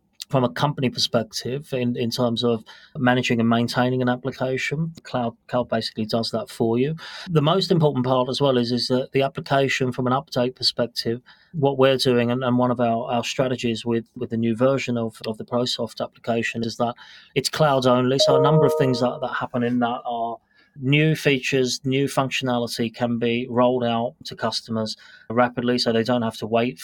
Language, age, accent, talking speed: English, 30-49, British, 195 wpm